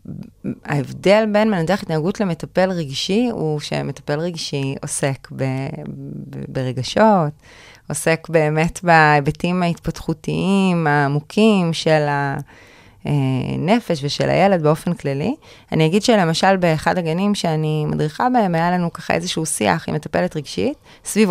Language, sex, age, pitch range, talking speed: Hebrew, female, 20-39, 155-215 Hz, 115 wpm